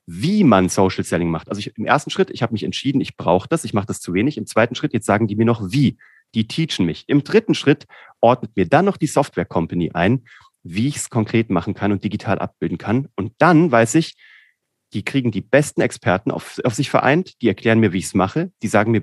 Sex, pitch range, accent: male, 100-140 Hz, German